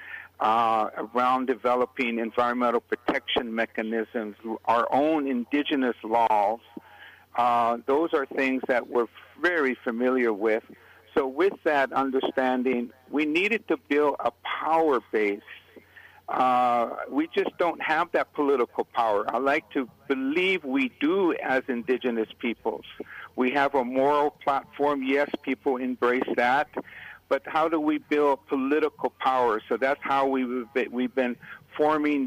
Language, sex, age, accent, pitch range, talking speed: English, male, 60-79, American, 120-140 Hz, 130 wpm